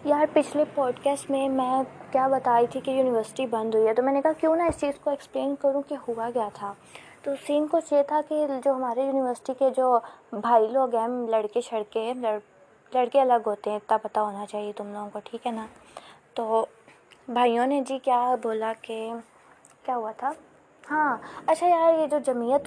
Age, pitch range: 20-39, 230-275 Hz